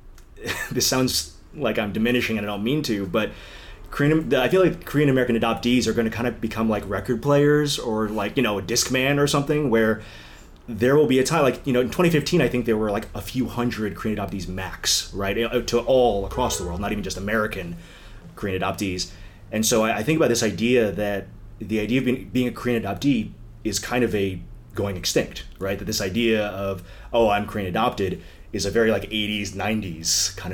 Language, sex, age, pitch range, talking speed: English, male, 30-49, 100-125 Hz, 210 wpm